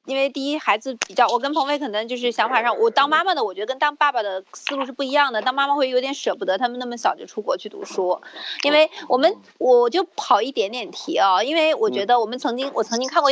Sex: female